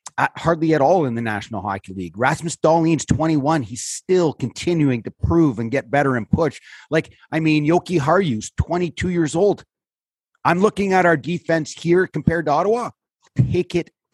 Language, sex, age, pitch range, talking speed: English, male, 30-49, 125-165 Hz, 175 wpm